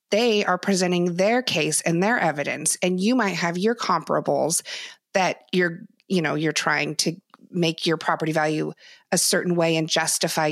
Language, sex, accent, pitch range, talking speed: English, female, American, 170-210 Hz, 170 wpm